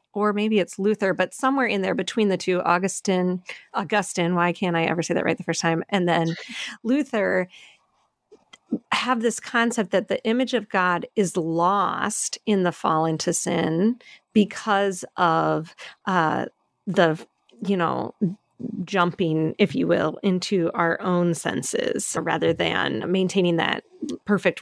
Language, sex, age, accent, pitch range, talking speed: English, female, 40-59, American, 175-220 Hz, 145 wpm